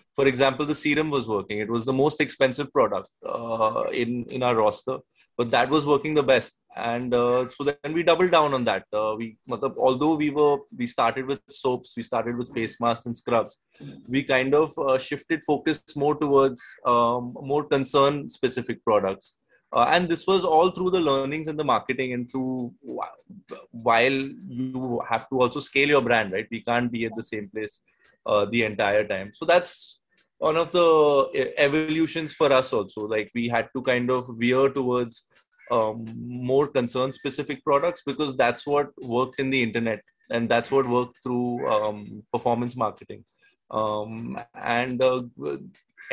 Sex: male